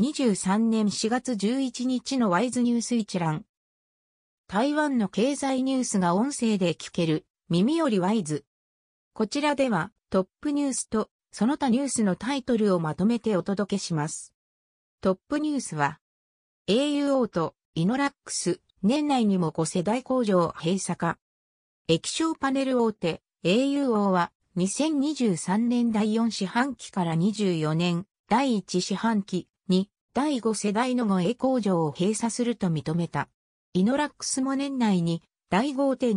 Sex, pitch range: female, 175-255 Hz